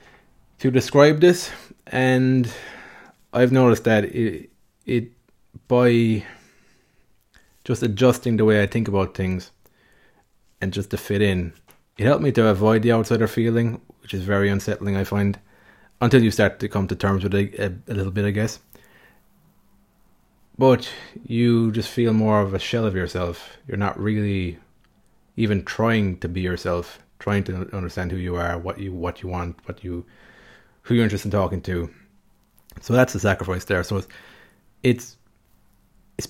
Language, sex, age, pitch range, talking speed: English, male, 30-49, 95-115 Hz, 160 wpm